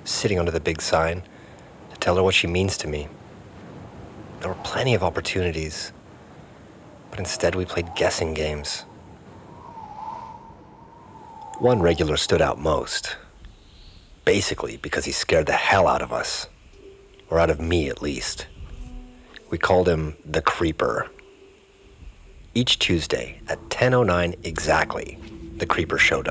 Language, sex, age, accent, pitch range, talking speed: English, male, 40-59, American, 80-110 Hz, 130 wpm